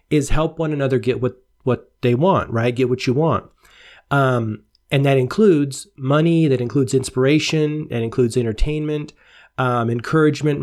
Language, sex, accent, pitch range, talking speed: English, male, American, 125-150 Hz, 150 wpm